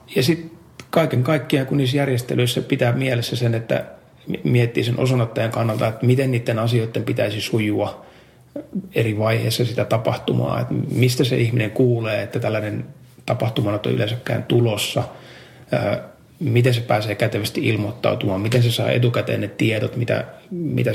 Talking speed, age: 140 wpm, 30-49